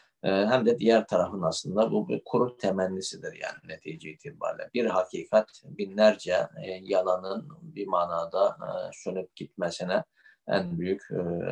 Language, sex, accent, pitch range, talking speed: Turkish, male, native, 90-105 Hz, 115 wpm